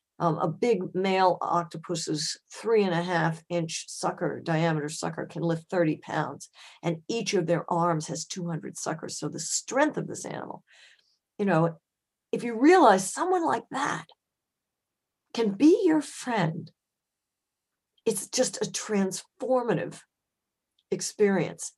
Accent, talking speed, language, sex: American, 130 wpm, English, female